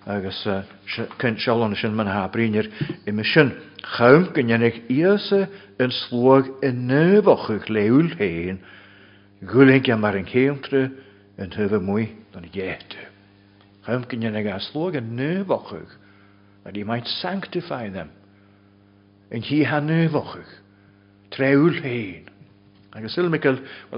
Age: 60-79